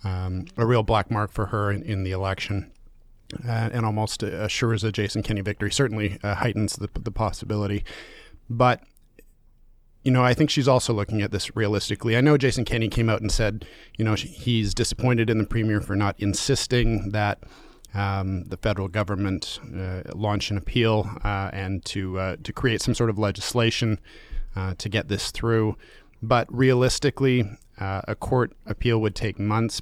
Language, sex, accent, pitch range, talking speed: English, male, American, 100-115 Hz, 175 wpm